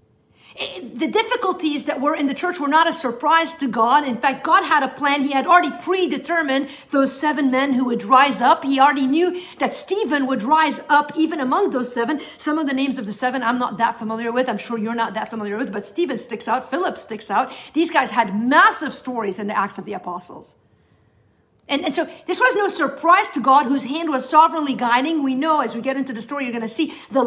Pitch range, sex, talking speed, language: 235-300 Hz, female, 235 wpm, English